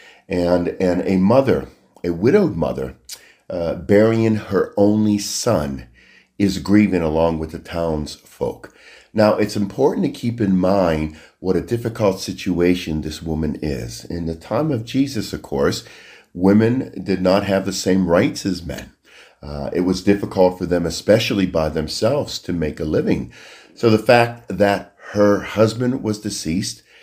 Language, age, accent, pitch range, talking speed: Ukrainian, 50-69, American, 80-105 Hz, 155 wpm